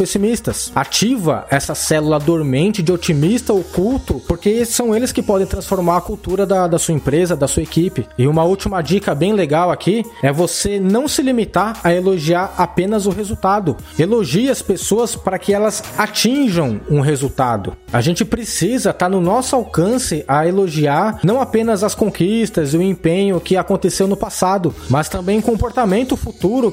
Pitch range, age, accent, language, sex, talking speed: 155-195 Hz, 20-39, Brazilian, Portuguese, male, 165 wpm